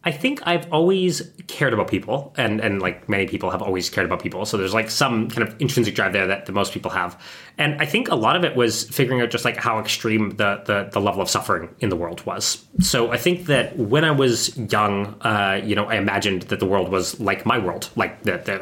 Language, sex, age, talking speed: English, male, 20-39, 245 wpm